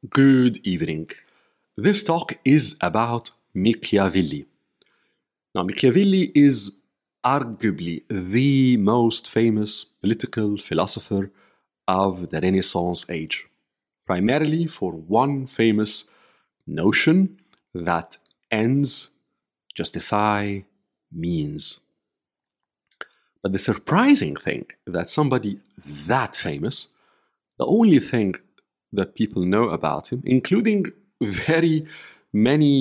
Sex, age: male, 50-69